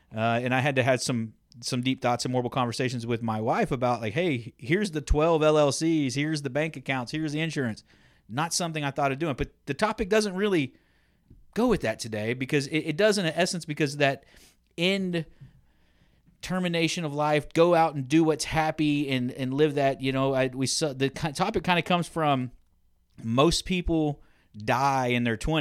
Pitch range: 125-160 Hz